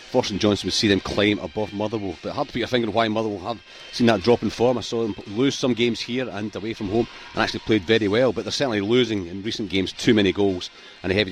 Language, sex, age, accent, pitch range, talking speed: English, male, 40-59, British, 100-115 Hz, 275 wpm